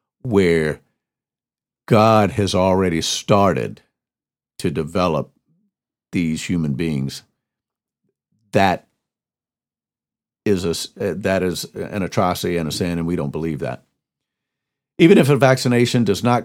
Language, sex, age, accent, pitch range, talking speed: English, male, 50-69, American, 90-110 Hz, 115 wpm